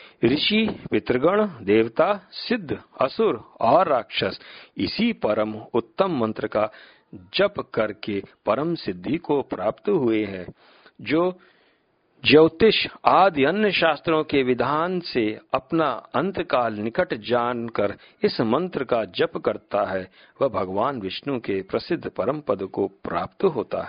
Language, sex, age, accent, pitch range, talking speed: Hindi, male, 50-69, native, 110-160 Hz, 120 wpm